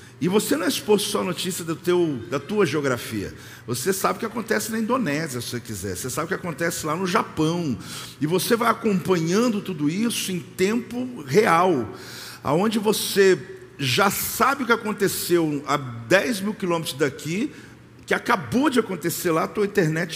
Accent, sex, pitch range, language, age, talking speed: Brazilian, male, 155-220 Hz, Portuguese, 50-69, 180 wpm